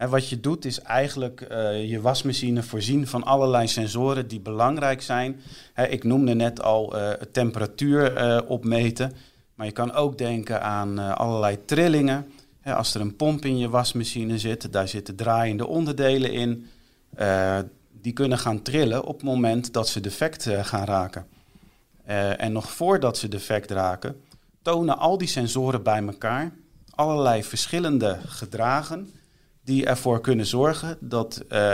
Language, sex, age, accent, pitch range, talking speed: Dutch, male, 40-59, Dutch, 105-135 Hz, 150 wpm